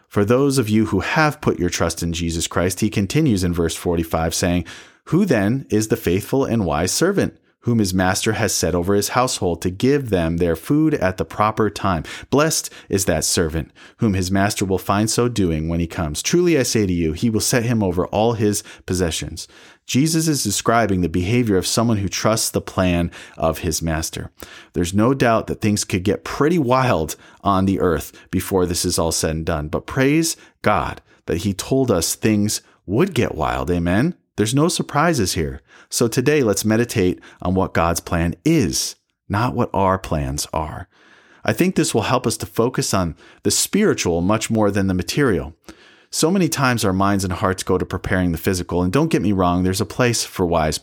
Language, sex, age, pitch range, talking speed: English, male, 30-49, 85-115 Hz, 200 wpm